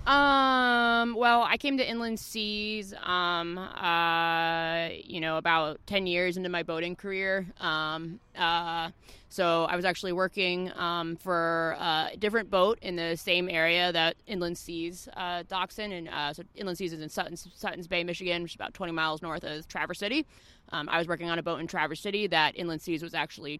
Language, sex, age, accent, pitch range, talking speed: English, female, 20-39, American, 150-180 Hz, 190 wpm